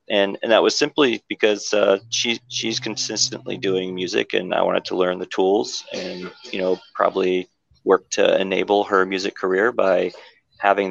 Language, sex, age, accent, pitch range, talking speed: English, male, 30-49, American, 90-100 Hz, 170 wpm